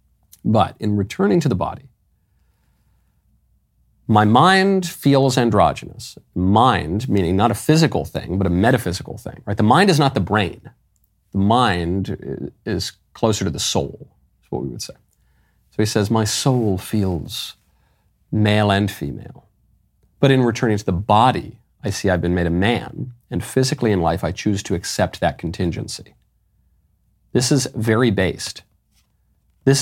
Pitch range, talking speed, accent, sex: 95-125 Hz, 155 wpm, American, male